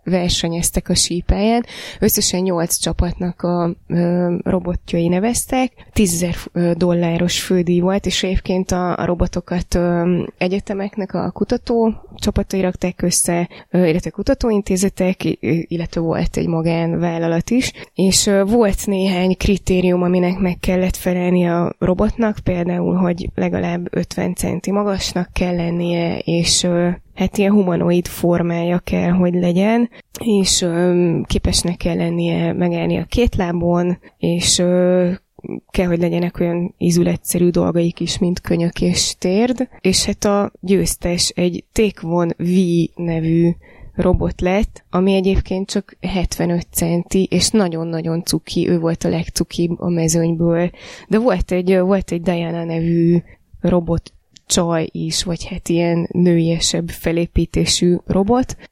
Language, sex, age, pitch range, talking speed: Hungarian, female, 20-39, 170-190 Hz, 120 wpm